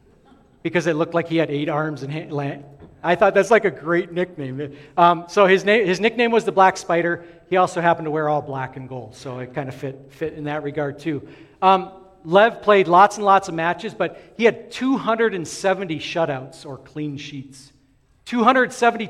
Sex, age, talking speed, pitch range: male, 50-69, 200 wpm, 145-190 Hz